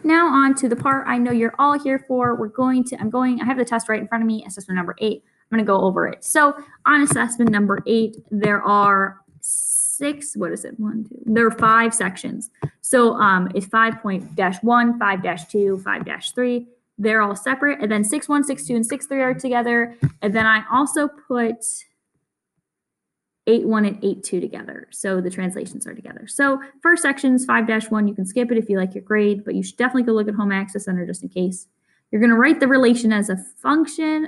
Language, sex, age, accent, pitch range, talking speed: English, female, 10-29, American, 205-255 Hz, 215 wpm